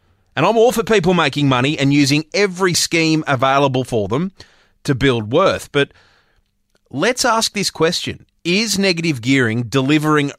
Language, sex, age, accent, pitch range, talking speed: English, male, 30-49, Australian, 120-160 Hz, 150 wpm